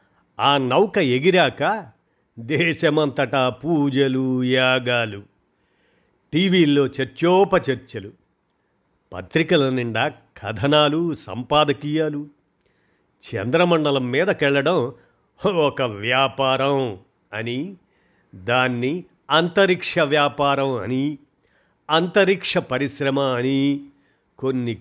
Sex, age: male, 50-69